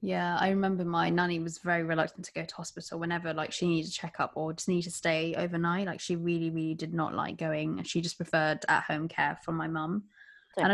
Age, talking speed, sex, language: 20-39, 240 wpm, female, English